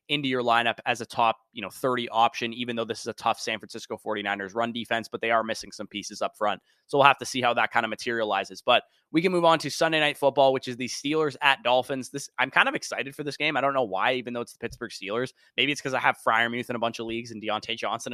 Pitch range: 115-140 Hz